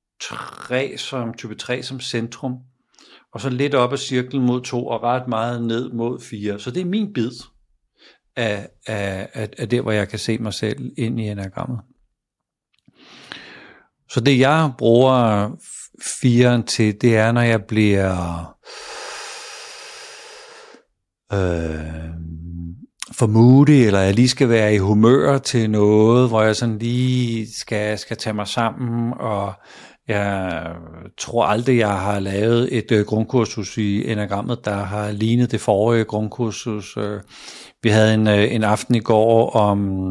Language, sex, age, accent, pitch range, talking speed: Danish, male, 50-69, native, 105-125 Hz, 140 wpm